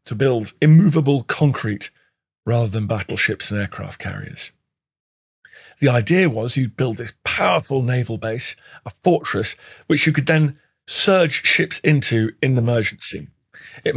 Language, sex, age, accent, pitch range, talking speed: English, male, 40-59, British, 115-145 Hz, 140 wpm